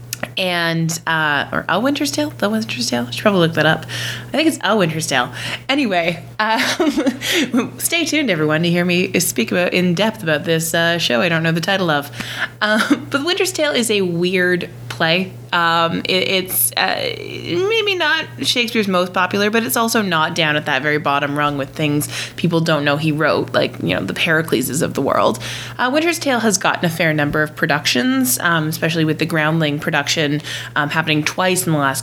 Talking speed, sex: 200 wpm, female